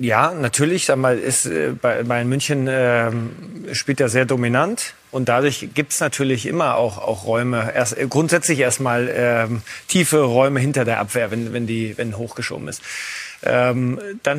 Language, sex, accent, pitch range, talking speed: German, male, German, 125-145 Hz, 155 wpm